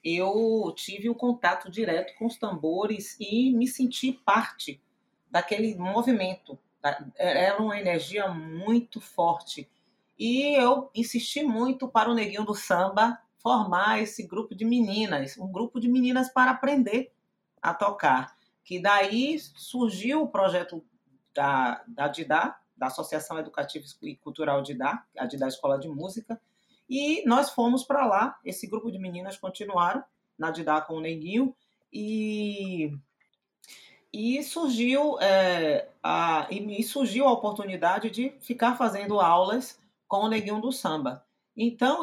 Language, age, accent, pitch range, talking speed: English, 40-59, Brazilian, 175-240 Hz, 130 wpm